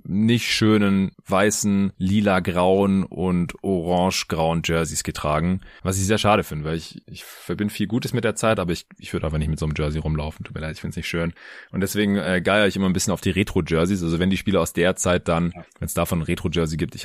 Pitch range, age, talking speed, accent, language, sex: 80-100 Hz, 30-49, 235 wpm, German, German, male